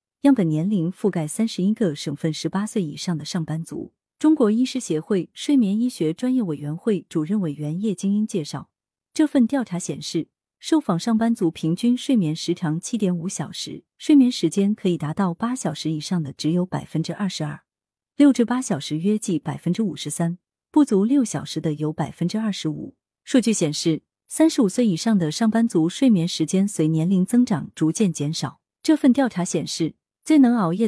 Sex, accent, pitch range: female, native, 160-230 Hz